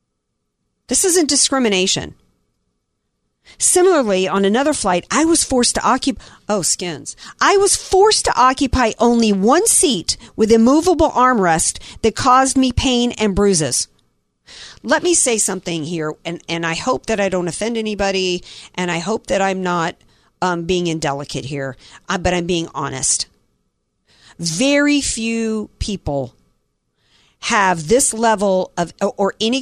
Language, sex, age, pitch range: English, female, 50-69, 165-225 Hz